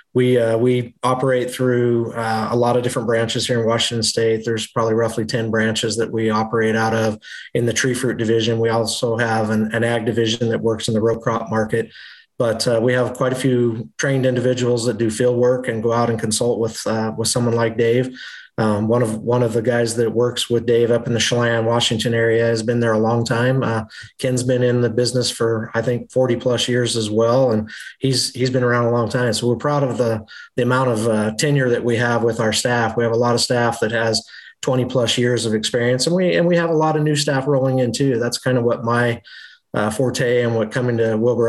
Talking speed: 240 wpm